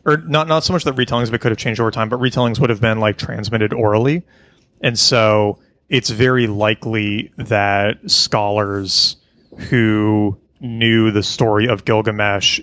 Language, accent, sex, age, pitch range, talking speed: English, American, male, 30-49, 105-125 Hz, 165 wpm